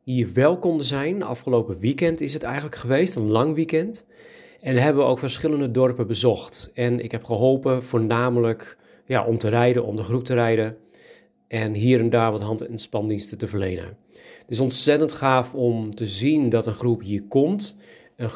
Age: 40-59